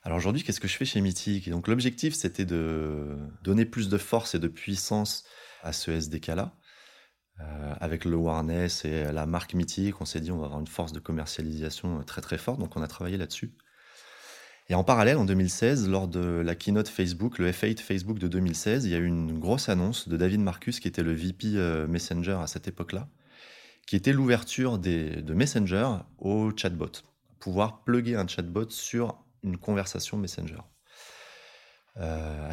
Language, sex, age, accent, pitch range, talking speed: French, male, 20-39, French, 80-105 Hz, 185 wpm